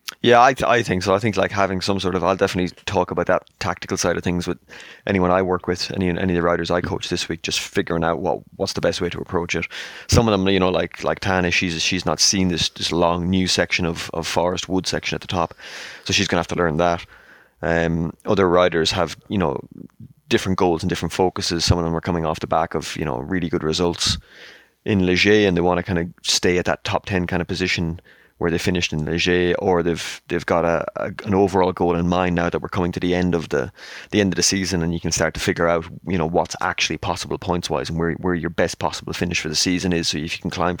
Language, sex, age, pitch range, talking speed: English, male, 20-39, 85-95 Hz, 265 wpm